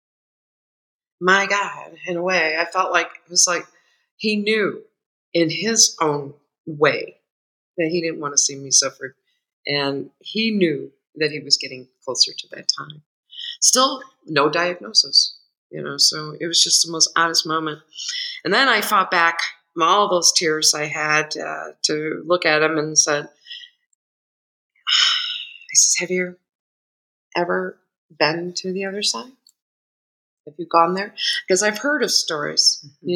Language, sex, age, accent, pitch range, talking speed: English, female, 50-69, American, 155-240 Hz, 160 wpm